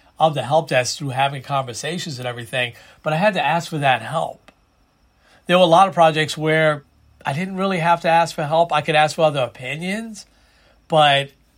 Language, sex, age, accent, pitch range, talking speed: English, male, 40-59, American, 125-160 Hz, 200 wpm